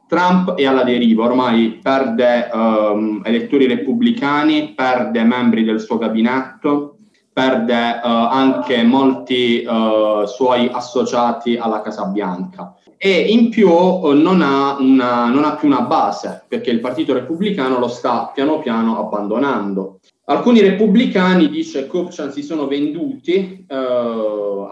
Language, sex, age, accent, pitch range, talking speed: Italian, male, 20-39, native, 120-160 Hz, 115 wpm